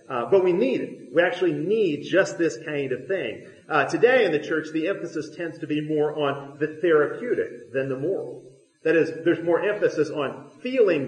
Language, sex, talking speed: English, male, 200 wpm